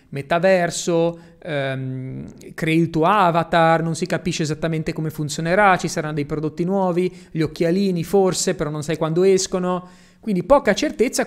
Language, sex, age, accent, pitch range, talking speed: Italian, male, 20-39, native, 135-175 Hz, 150 wpm